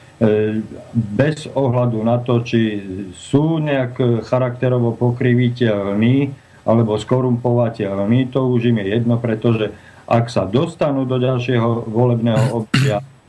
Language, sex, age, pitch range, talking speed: Slovak, male, 50-69, 110-130 Hz, 110 wpm